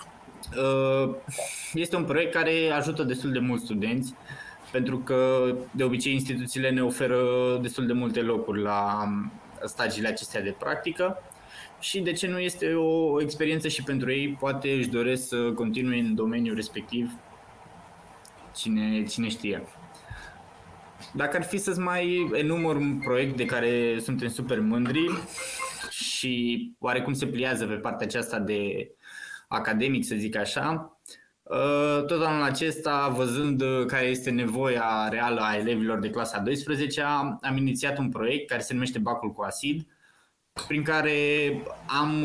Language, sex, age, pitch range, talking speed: Romanian, male, 20-39, 115-145 Hz, 140 wpm